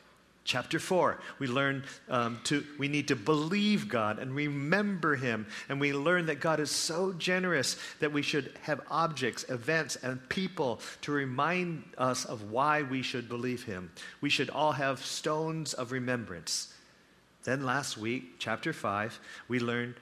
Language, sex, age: English, male, 50-69